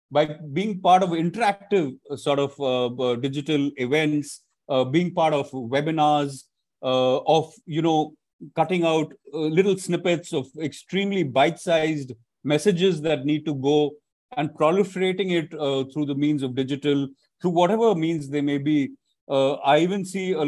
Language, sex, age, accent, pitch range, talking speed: Hindi, male, 40-59, native, 135-165 Hz, 160 wpm